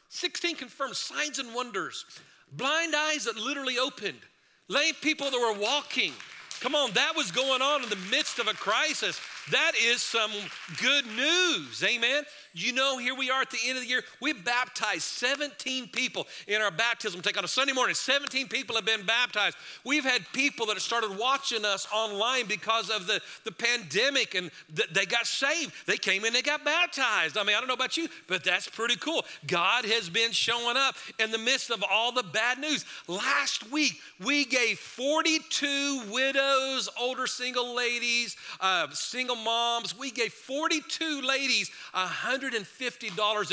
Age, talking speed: 50-69, 175 wpm